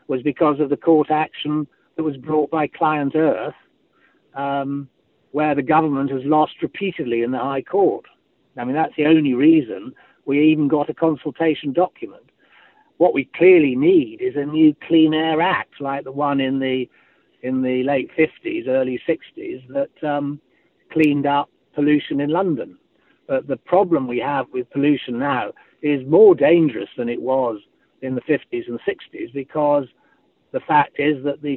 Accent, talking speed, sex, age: British, 170 wpm, male, 60-79